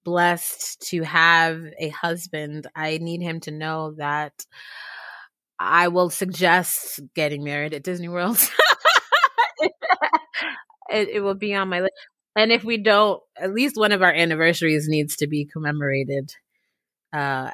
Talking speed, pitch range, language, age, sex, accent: 140 wpm, 160-220 Hz, English, 20-39, female, American